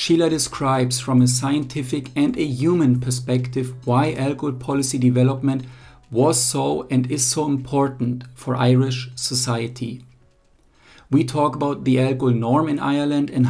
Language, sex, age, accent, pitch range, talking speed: English, male, 50-69, German, 125-140 Hz, 140 wpm